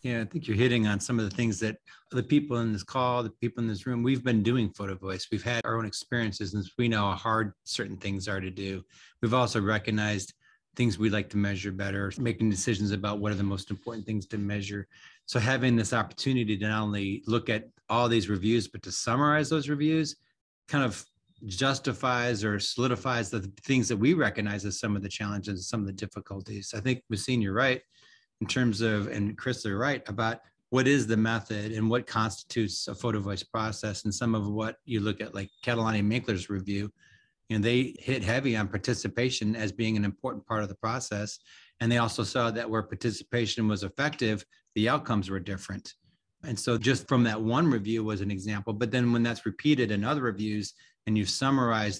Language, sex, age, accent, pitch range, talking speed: English, male, 30-49, American, 105-120 Hz, 210 wpm